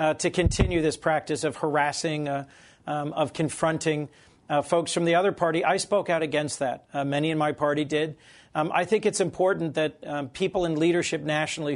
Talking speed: 200 wpm